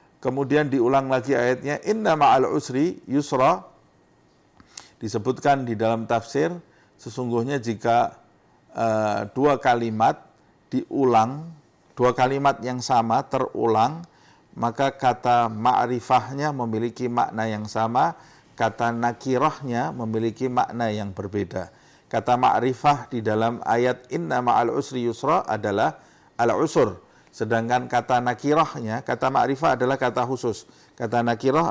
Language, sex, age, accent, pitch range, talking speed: English, male, 50-69, Indonesian, 115-150 Hz, 105 wpm